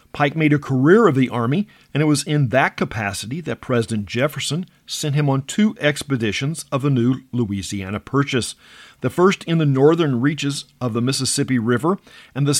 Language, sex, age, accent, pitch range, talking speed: English, male, 50-69, American, 120-150 Hz, 180 wpm